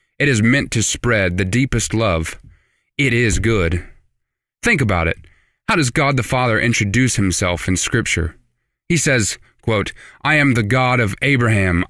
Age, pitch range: 20-39, 100-130 Hz